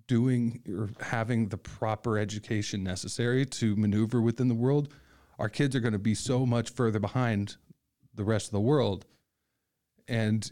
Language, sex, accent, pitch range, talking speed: English, male, American, 105-120 Hz, 160 wpm